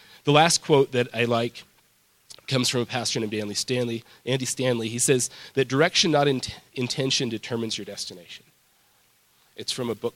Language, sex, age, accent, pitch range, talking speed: English, male, 30-49, American, 110-140 Hz, 155 wpm